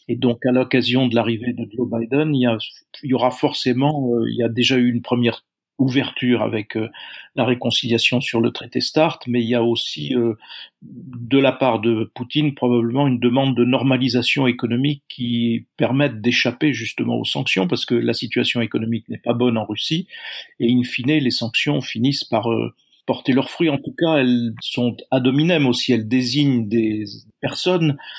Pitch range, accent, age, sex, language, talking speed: 120-135 Hz, French, 50-69, male, French, 175 wpm